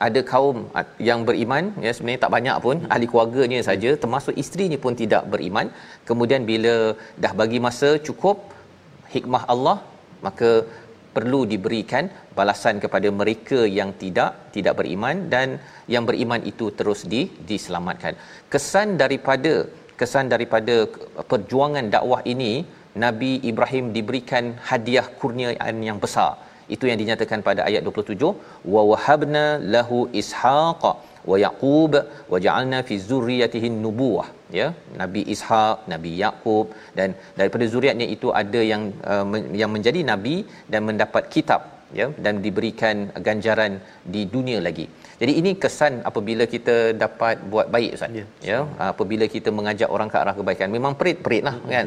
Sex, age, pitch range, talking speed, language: male, 40-59, 110-130 Hz, 135 wpm, Malayalam